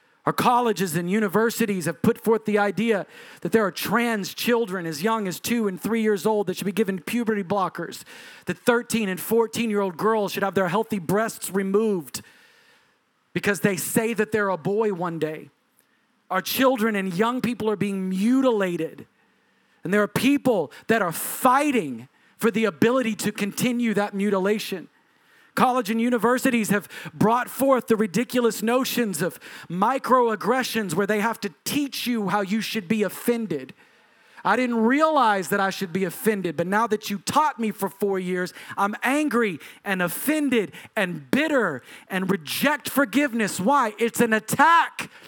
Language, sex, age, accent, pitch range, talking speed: English, male, 40-59, American, 200-240 Hz, 165 wpm